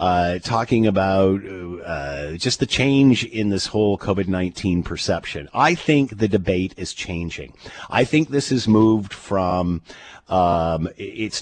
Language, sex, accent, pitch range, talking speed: English, male, American, 100-140 Hz, 135 wpm